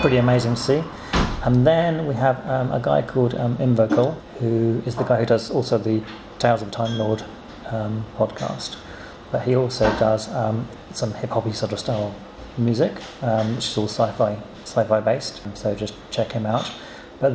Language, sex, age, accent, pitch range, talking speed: English, male, 40-59, British, 110-125 Hz, 175 wpm